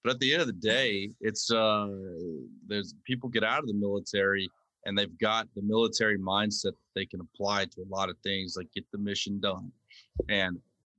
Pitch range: 95-110 Hz